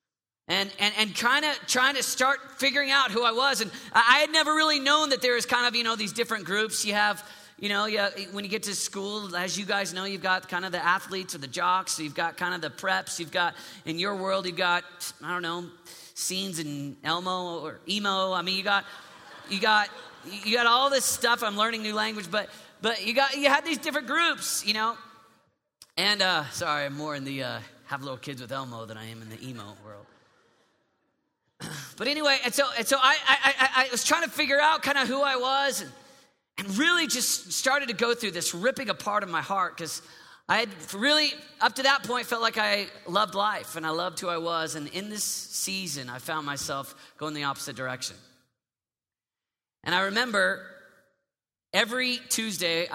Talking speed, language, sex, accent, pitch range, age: 215 wpm, English, male, American, 155-235 Hz, 40-59